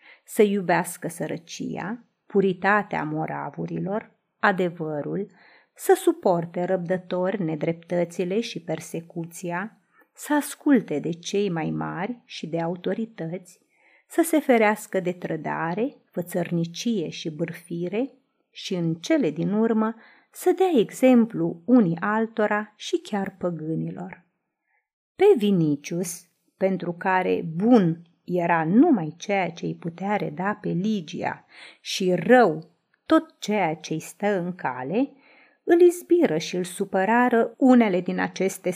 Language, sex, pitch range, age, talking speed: Romanian, female, 170-230 Hz, 30-49, 115 wpm